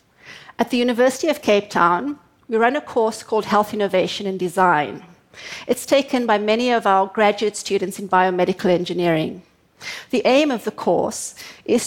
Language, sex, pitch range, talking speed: English, female, 195-225 Hz, 160 wpm